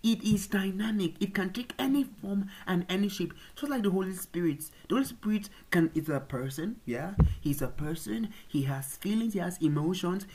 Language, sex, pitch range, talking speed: English, male, 140-195 Hz, 190 wpm